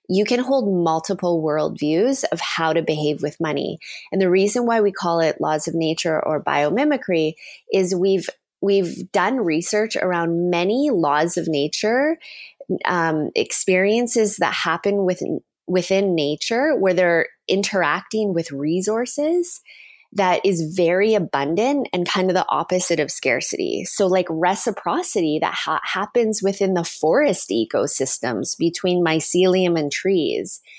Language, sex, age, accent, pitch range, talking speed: English, female, 20-39, American, 165-200 Hz, 135 wpm